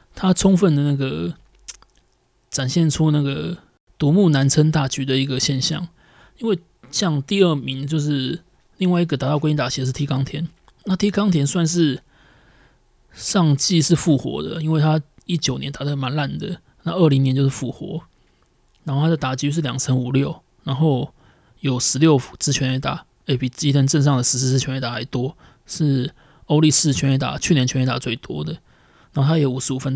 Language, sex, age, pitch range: Chinese, male, 20-39, 130-160 Hz